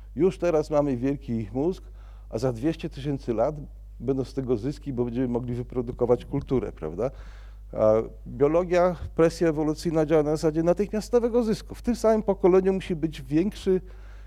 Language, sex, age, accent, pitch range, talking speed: Polish, male, 50-69, native, 115-165 Hz, 150 wpm